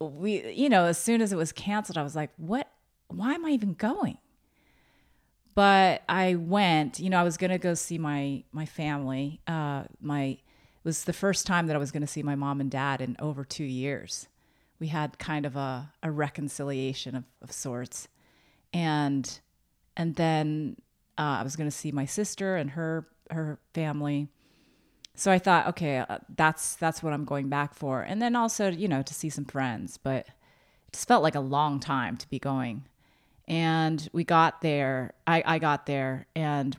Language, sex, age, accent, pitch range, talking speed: English, female, 30-49, American, 140-165 Hz, 190 wpm